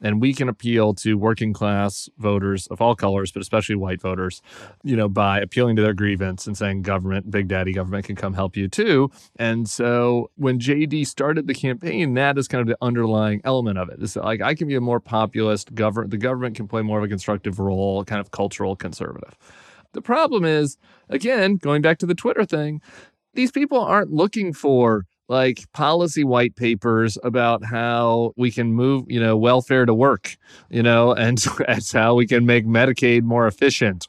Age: 30-49